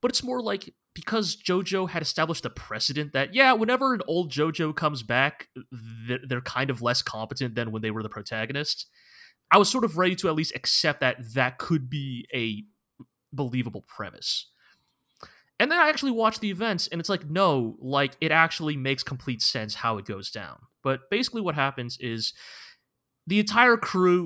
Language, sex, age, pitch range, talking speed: English, male, 20-39, 120-165 Hz, 185 wpm